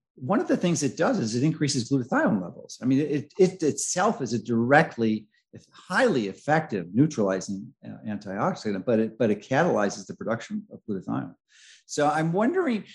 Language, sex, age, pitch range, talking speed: English, male, 50-69, 115-155 Hz, 165 wpm